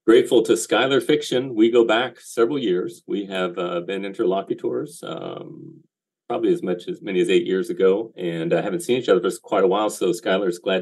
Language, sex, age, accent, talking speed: English, male, 40-59, American, 215 wpm